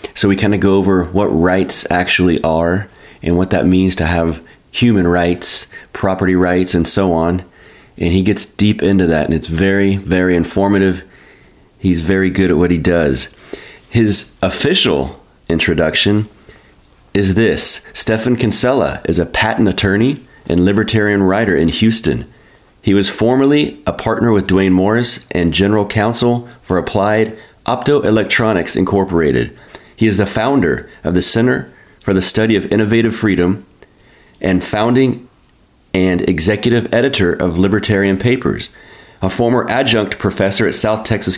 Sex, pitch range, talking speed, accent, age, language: male, 90-110 Hz, 145 wpm, American, 30-49, English